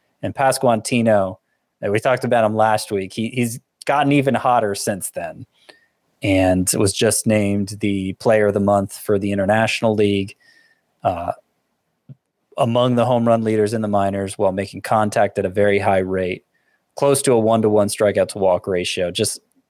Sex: male